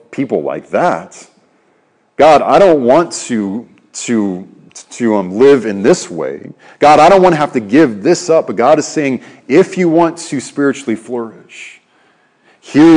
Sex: male